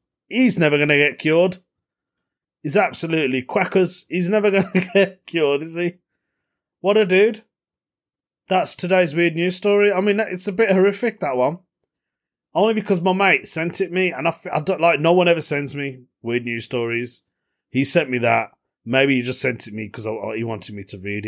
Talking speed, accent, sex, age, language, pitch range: 195 wpm, British, male, 30-49, English, 110-175 Hz